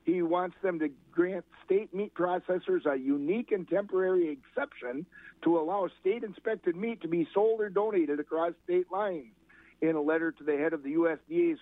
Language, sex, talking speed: English, male, 175 wpm